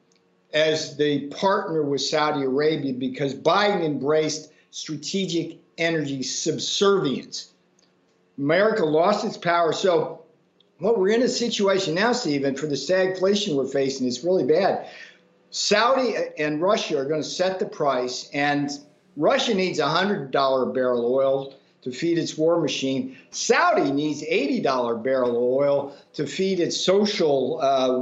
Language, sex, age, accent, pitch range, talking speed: English, male, 50-69, American, 135-170 Hz, 135 wpm